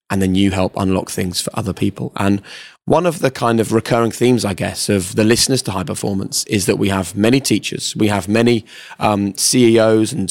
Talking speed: 215 wpm